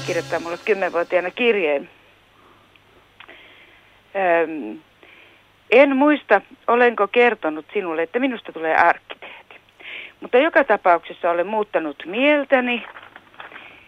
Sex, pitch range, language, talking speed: female, 160-220 Hz, Finnish, 85 wpm